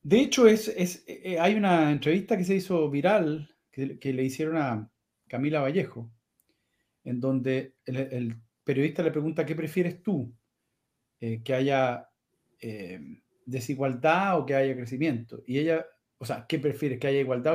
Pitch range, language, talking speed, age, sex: 125-185 Hz, Spanish, 160 wpm, 40-59, male